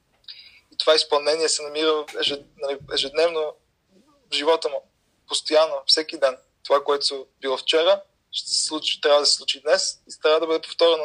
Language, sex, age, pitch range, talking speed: Bulgarian, male, 20-39, 140-170 Hz, 165 wpm